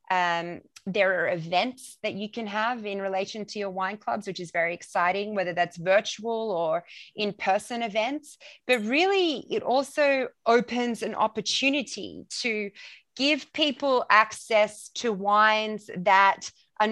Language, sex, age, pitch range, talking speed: English, female, 30-49, 195-230 Hz, 140 wpm